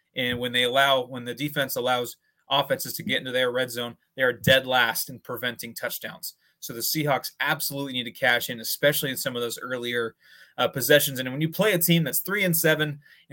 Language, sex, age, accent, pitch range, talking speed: English, male, 20-39, American, 125-155 Hz, 220 wpm